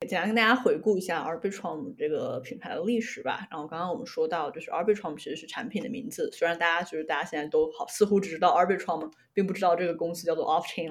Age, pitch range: 20-39, 170-240 Hz